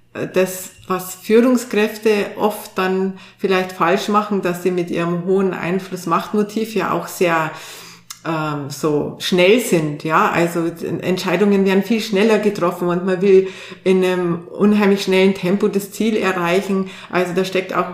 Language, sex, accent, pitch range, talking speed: German, female, Austrian, 170-200 Hz, 145 wpm